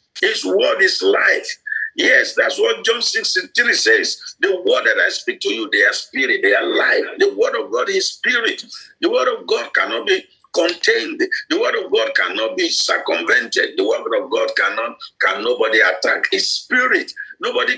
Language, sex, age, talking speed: English, male, 50-69, 190 wpm